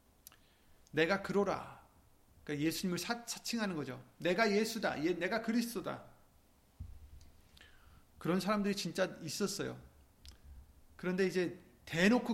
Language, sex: Korean, male